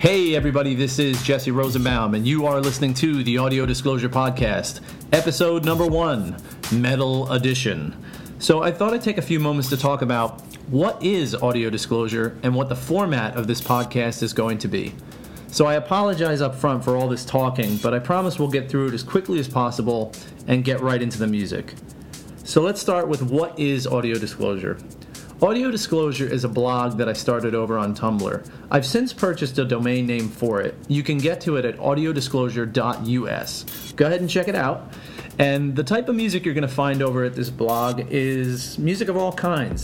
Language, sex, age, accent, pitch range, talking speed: English, male, 40-59, American, 120-150 Hz, 195 wpm